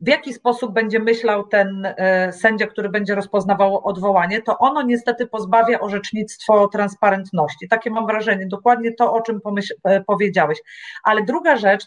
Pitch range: 200-245 Hz